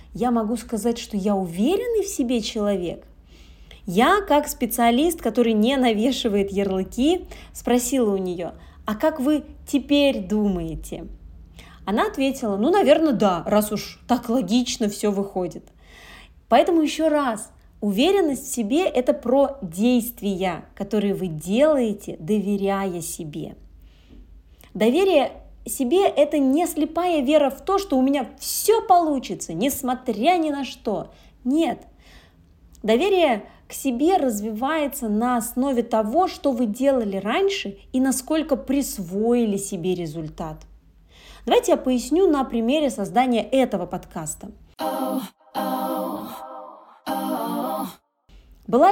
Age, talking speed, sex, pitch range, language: 20-39, 115 wpm, female, 200-285 Hz, Russian